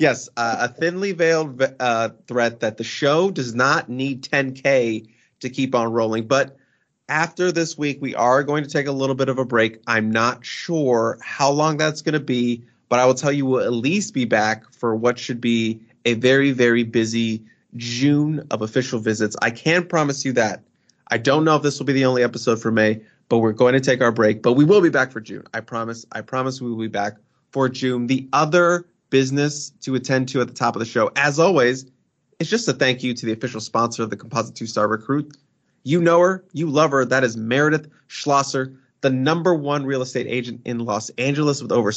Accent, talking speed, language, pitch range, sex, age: American, 220 wpm, English, 115-145 Hz, male, 30-49